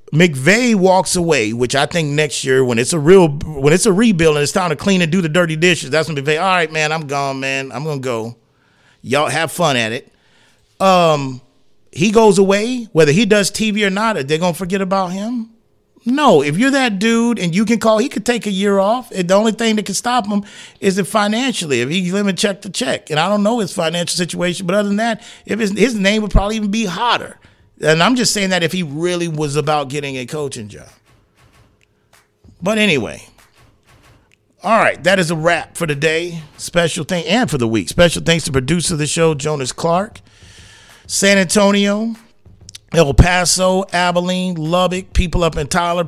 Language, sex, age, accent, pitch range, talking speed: English, male, 30-49, American, 145-195 Hz, 205 wpm